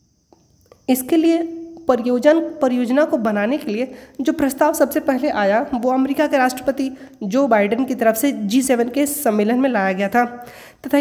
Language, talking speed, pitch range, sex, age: Hindi, 170 wpm, 245-290 Hz, female, 20-39